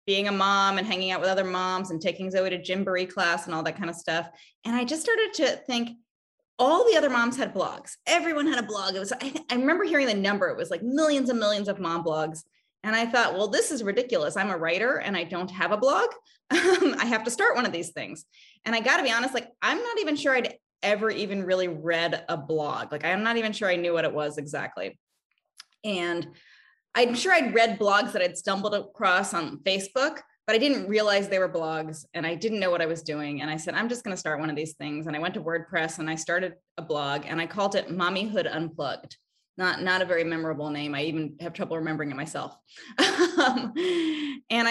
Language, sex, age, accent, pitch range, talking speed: English, female, 20-39, American, 170-240 Hz, 240 wpm